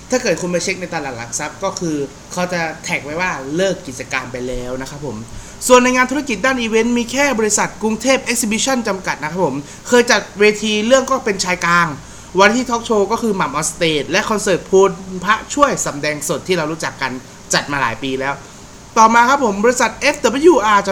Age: 30-49